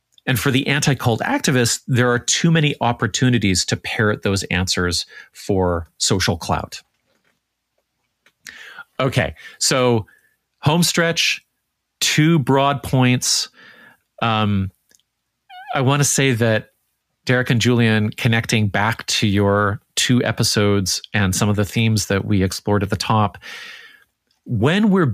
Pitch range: 100-130 Hz